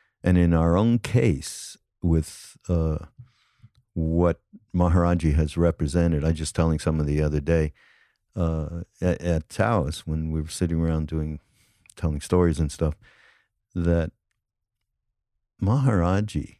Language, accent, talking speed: English, American, 125 wpm